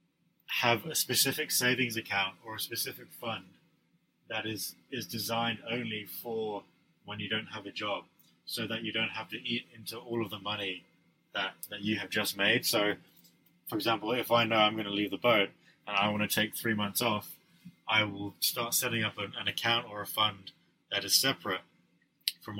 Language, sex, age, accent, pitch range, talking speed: German, male, 20-39, British, 100-120 Hz, 195 wpm